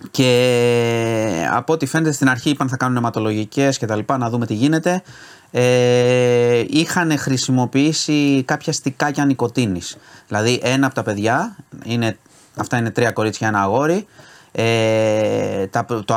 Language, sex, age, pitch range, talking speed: Greek, male, 30-49, 110-140 Hz, 135 wpm